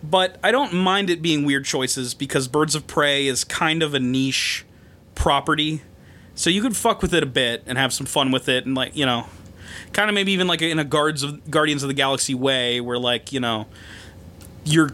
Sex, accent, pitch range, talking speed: male, American, 125-175 Hz, 220 wpm